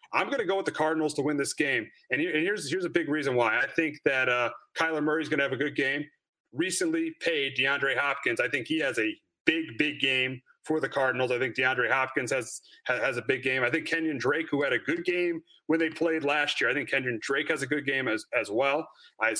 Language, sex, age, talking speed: English, male, 30-49, 250 wpm